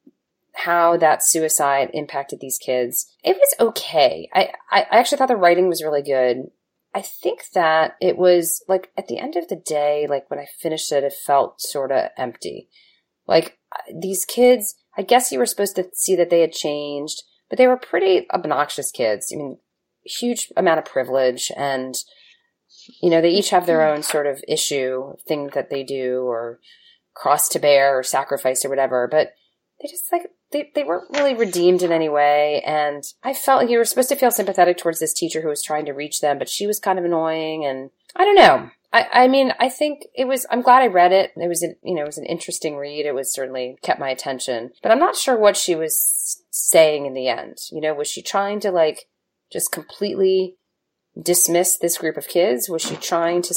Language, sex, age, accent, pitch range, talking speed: English, female, 30-49, American, 145-205 Hz, 205 wpm